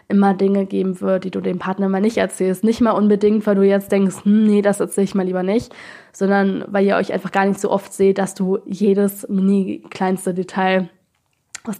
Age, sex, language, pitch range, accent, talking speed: 20-39, female, German, 195-215 Hz, German, 210 wpm